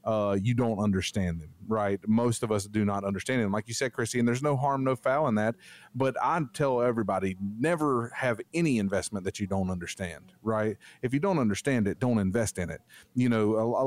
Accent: American